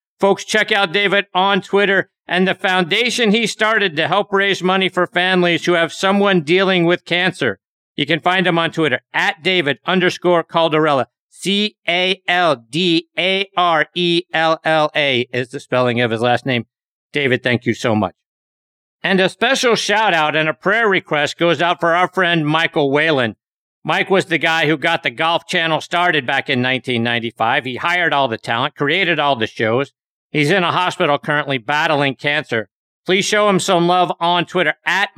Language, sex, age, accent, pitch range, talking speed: English, male, 50-69, American, 150-185 Hz, 185 wpm